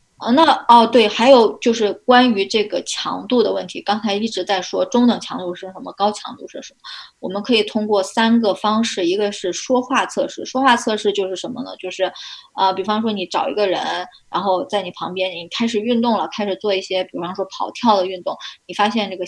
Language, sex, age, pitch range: Chinese, female, 20-39, 190-245 Hz